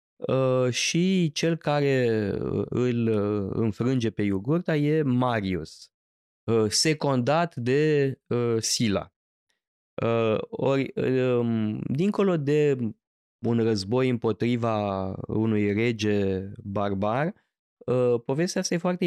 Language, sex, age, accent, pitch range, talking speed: Romanian, male, 20-39, native, 105-135 Hz, 100 wpm